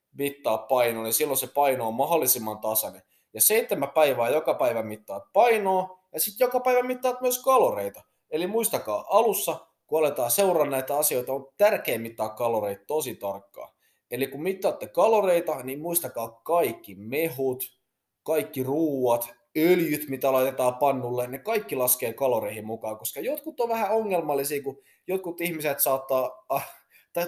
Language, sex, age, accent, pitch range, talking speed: Finnish, male, 20-39, native, 120-175 Hz, 145 wpm